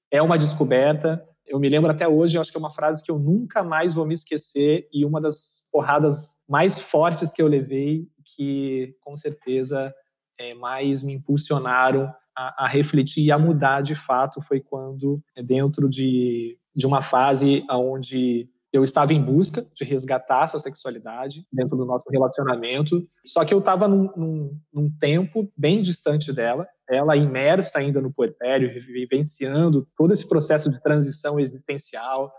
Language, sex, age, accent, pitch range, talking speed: Portuguese, male, 20-39, Brazilian, 135-160 Hz, 165 wpm